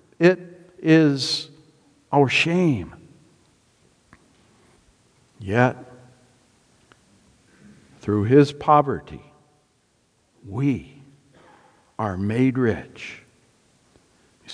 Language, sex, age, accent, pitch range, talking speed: English, male, 60-79, American, 125-160 Hz, 55 wpm